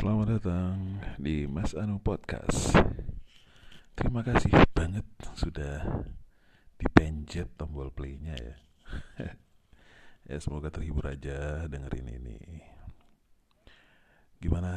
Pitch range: 70-85 Hz